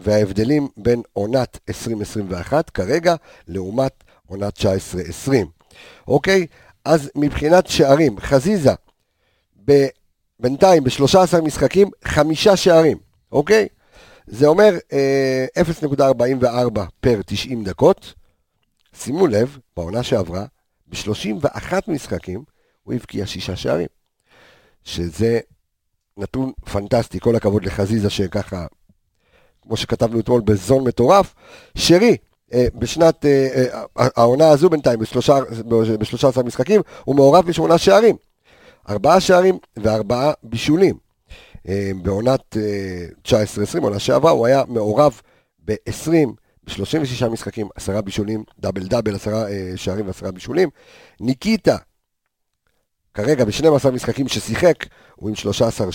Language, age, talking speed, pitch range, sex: Hebrew, 50-69, 100 wpm, 100-140 Hz, male